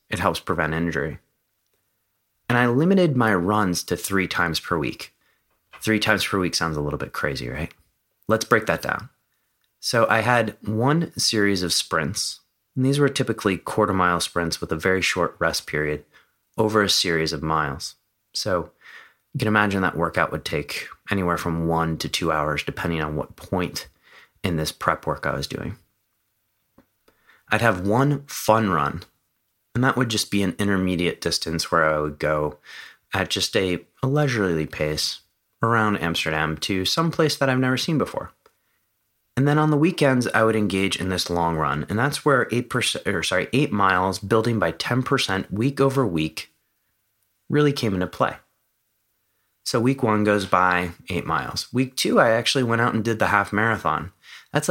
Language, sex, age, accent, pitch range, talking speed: English, male, 30-49, American, 85-115 Hz, 175 wpm